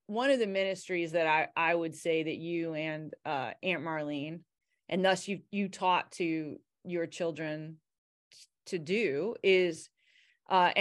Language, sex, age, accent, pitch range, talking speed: English, female, 30-49, American, 160-220 Hz, 150 wpm